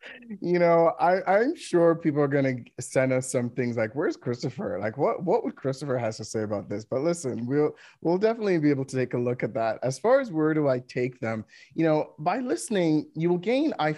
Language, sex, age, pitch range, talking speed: English, male, 30-49, 125-150 Hz, 235 wpm